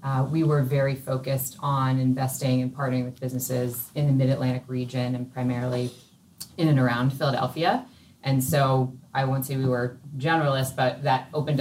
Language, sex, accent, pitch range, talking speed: English, female, American, 125-135 Hz, 165 wpm